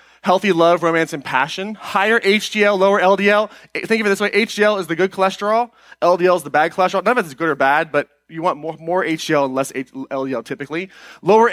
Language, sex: English, male